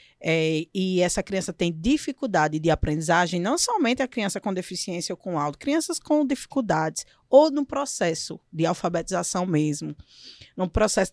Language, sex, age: Portuguese, female, 20-39